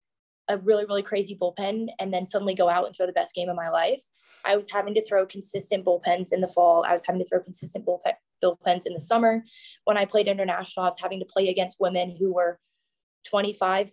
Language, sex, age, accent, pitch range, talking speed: English, female, 20-39, American, 185-215 Hz, 230 wpm